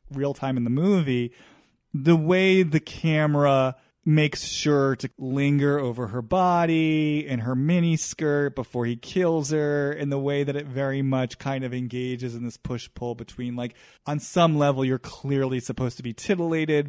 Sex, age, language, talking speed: male, 30-49, English, 170 wpm